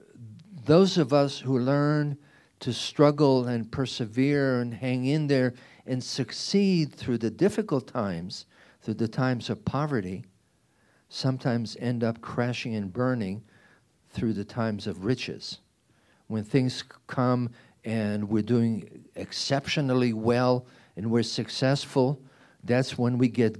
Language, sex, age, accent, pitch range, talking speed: English, male, 50-69, American, 115-140 Hz, 125 wpm